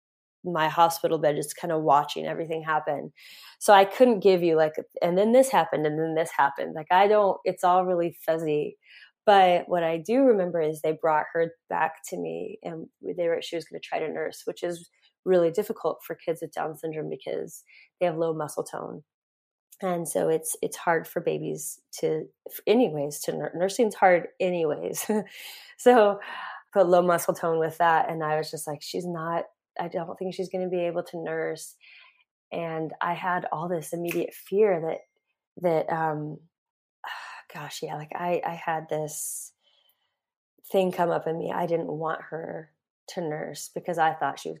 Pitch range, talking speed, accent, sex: 155-185 Hz, 185 wpm, American, female